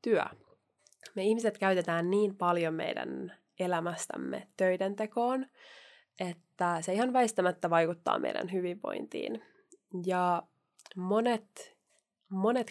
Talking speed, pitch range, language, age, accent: 95 wpm, 170-200 Hz, Finnish, 20-39, native